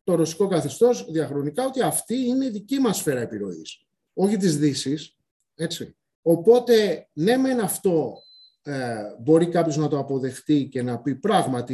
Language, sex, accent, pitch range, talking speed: Greek, male, native, 125-205 Hz, 155 wpm